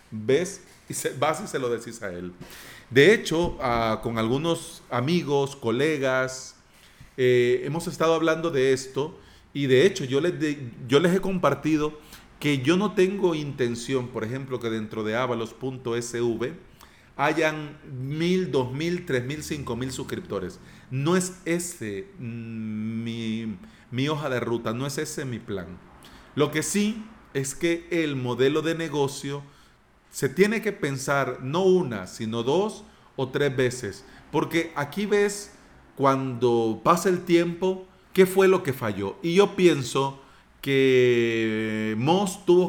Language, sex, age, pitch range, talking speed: Spanish, male, 40-59, 120-165 Hz, 150 wpm